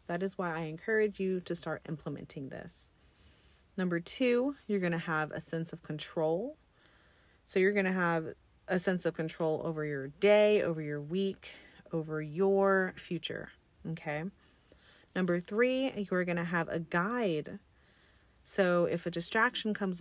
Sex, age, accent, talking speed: female, 30-49, American, 150 wpm